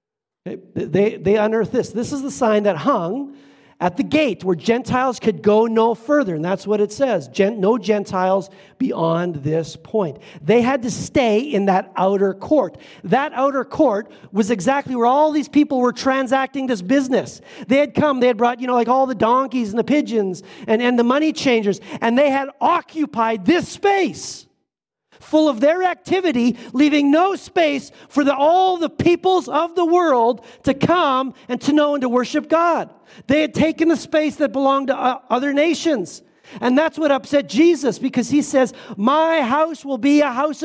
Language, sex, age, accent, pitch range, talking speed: English, male, 40-59, American, 215-290 Hz, 185 wpm